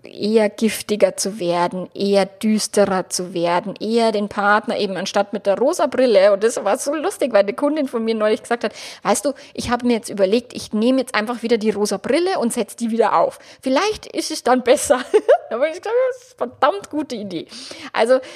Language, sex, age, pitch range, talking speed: German, female, 20-39, 200-270 Hz, 215 wpm